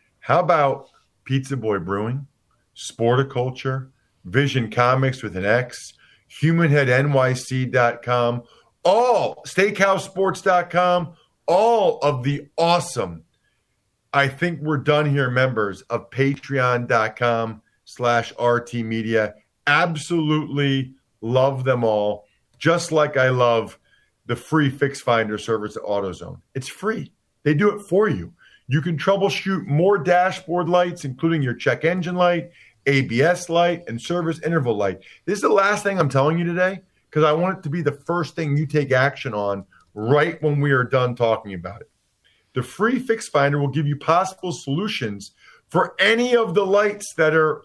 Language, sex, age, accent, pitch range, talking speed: English, male, 50-69, American, 125-175 Hz, 145 wpm